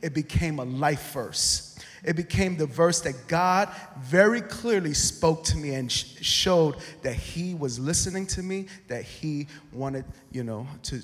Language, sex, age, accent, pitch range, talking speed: English, male, 30-49, American, 130-155 Hz, 170 wpm